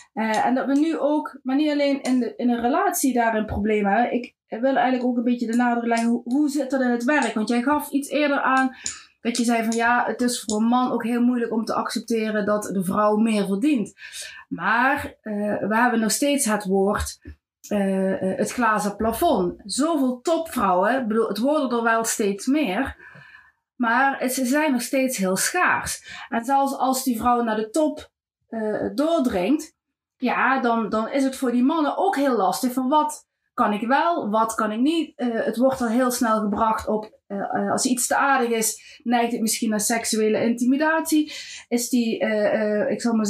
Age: 30-49